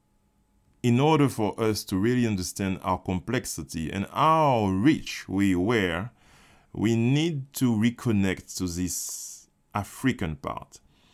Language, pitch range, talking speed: English, 90-115 Hz, 120 wpm